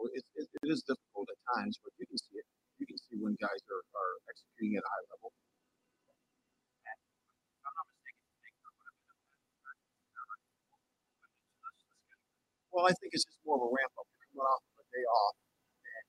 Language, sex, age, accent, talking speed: English, male, 40-59, American, 185 wpm